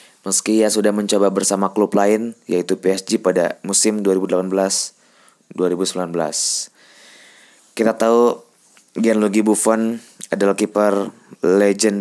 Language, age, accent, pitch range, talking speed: Indonesian, 20-39, native, 100-110 Hz, 95 wpm